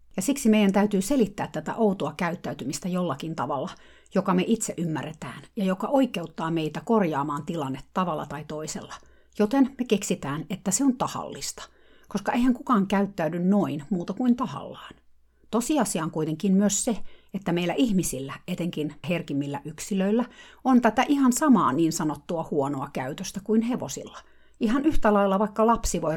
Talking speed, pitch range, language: 150 wpm, 155-215 Hz, Finnish